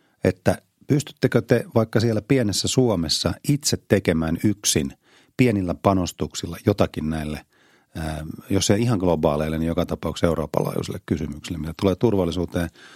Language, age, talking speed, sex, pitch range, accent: Finnish, 30-49, 120 wpm, male, 80-110 Hz, native